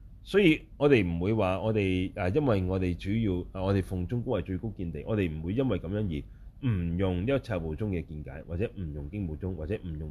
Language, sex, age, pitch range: Chinese, male, 30-49, 90-120 Hz